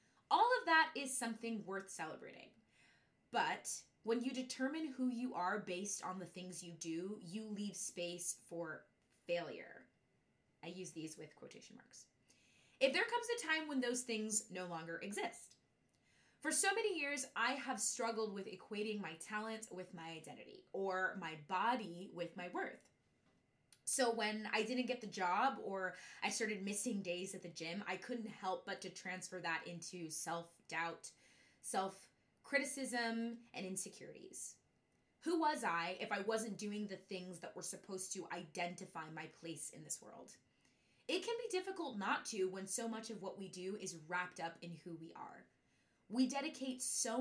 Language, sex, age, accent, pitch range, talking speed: English, female, 20-39, American, 180-245 Hz, 165 wpm